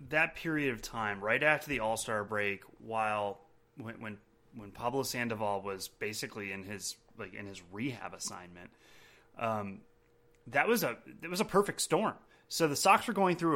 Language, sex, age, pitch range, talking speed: English, male, 30-49, 110-150 Hz, 175 wpm